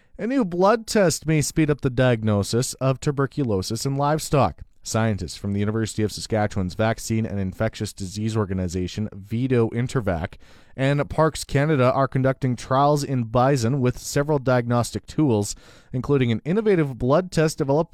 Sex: male